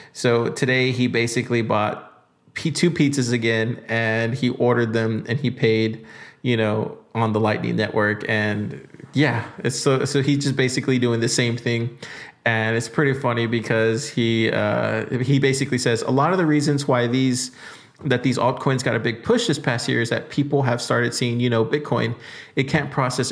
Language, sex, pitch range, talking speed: English, male, 115-135 Hz, 190 wpm